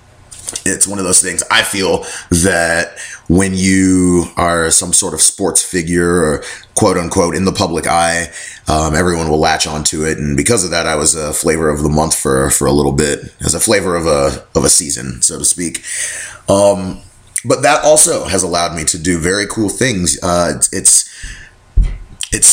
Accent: American